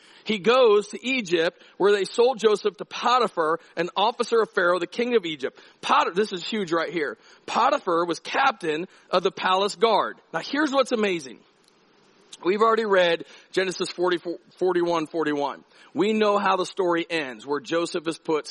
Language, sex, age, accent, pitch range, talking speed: English, male, 40-59, American, 165-230 Hz, 165 wpm